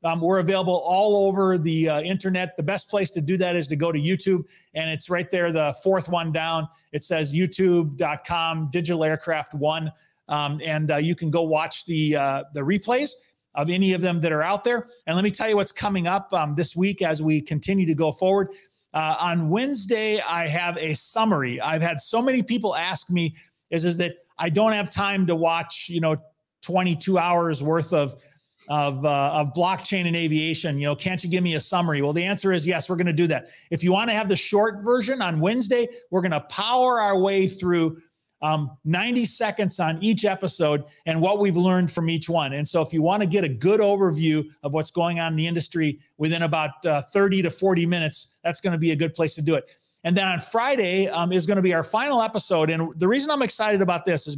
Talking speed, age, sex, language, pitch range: 225 wpm, 30-49, male, English, 160-190 Hz